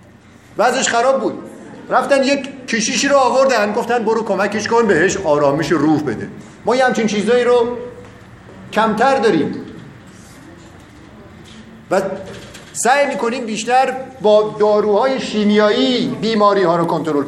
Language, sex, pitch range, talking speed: Persian, male, 180-240 Hz, 120 wpm